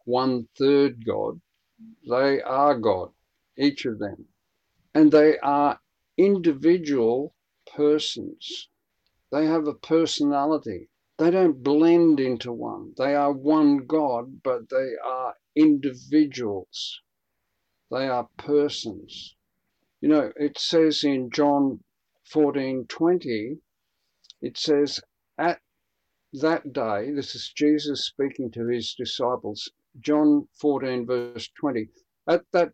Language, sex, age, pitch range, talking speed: English, male, 50-69, 130-160 Hz, 110 wpm